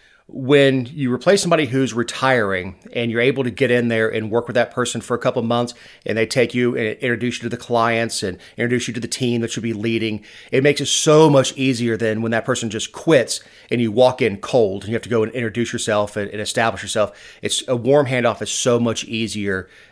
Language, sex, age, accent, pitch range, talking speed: English, male, 30-49, American, 110-130 Hz, 240 wpm